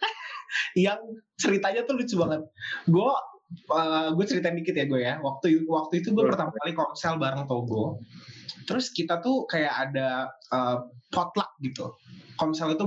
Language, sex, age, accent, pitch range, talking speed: Indonesian, male, 20-39, native, 135-190 Hz, 155 wpm